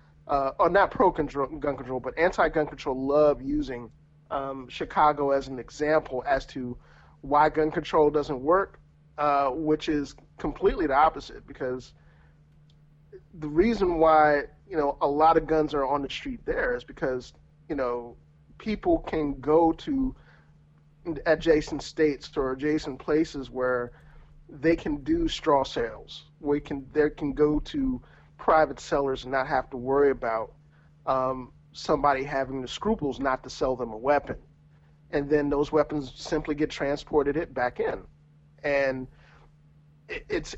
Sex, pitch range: male, 140-160 Hz